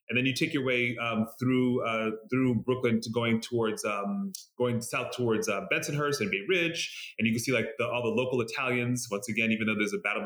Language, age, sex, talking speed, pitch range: English, 30-49, male, 235 wpm, 110-130 Hz